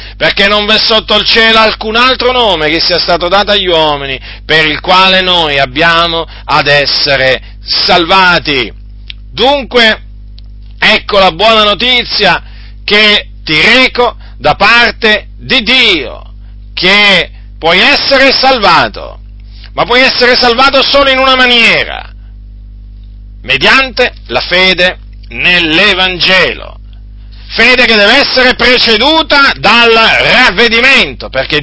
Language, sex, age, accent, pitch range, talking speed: Italian, male, 40-59, native, 155-230 Hz, 110 wpm